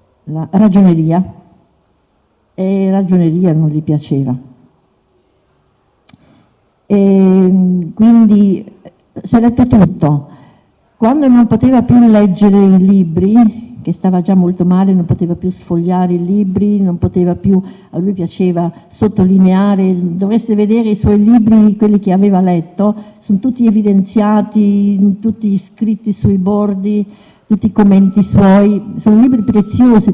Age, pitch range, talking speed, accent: 50-69, 180-215 Hz, 120 wpm, native